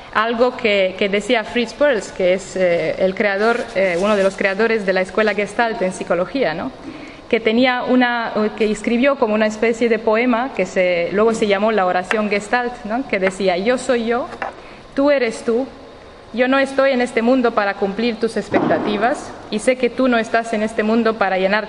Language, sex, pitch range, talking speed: Spanish, female, 205-250 Hz, 195 wpm